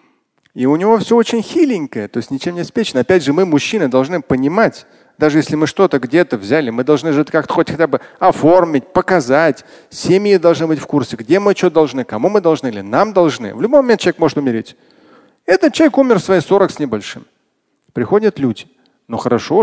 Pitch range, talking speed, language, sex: 140-200 Hz, 200 wpm, Russian, male